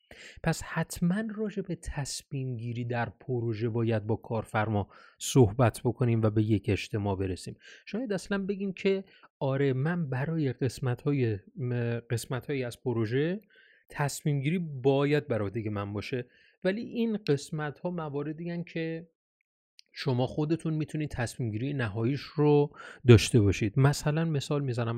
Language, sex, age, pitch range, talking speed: Persian, male, 30-49, 115-150 Hz, 130 wpm